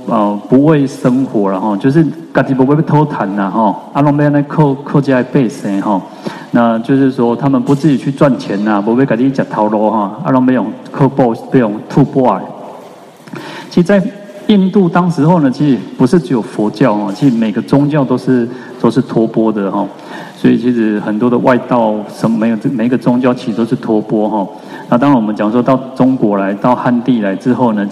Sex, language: male, Chinese